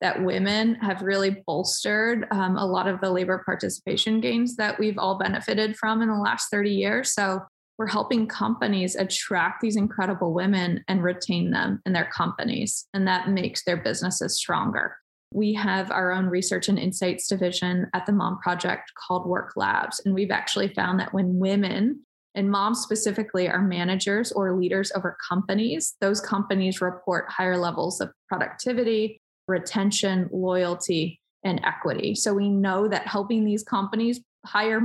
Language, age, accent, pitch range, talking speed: English, 20-39, American, 185-210 Hz, 160 wpm